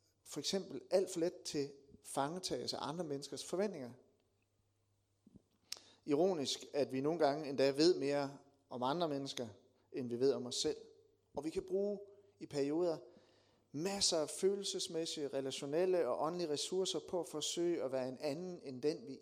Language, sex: Danish, male